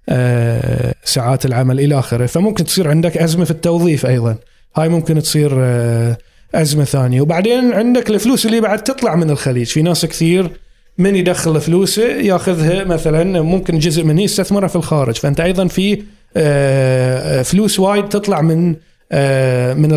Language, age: Arabic, 20-39